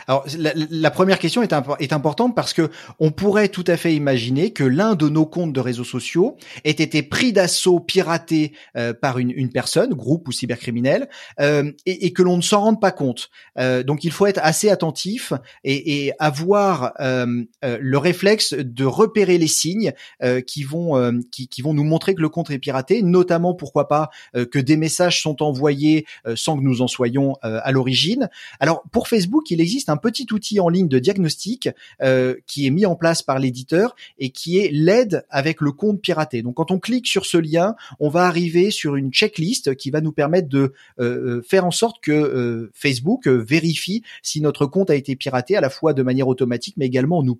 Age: 30-49